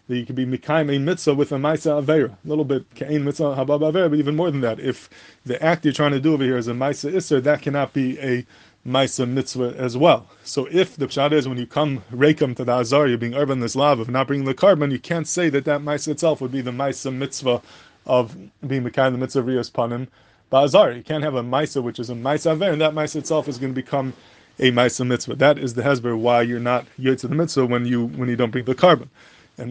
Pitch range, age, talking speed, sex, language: 125-145 Hz, 20-39, 260 wpm, male, English